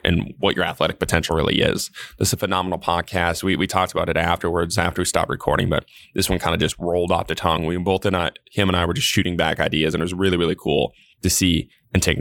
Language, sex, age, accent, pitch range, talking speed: English, male, 20-39, American, 85-105 Hz, 265 wpm